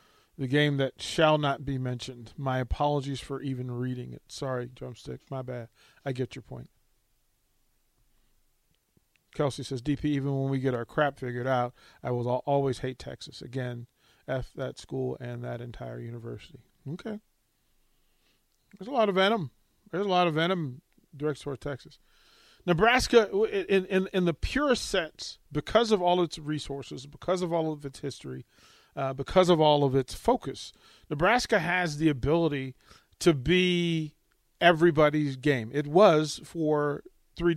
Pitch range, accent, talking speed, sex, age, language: 135-180 Hz, American, 155 wpm, male, 40-59, English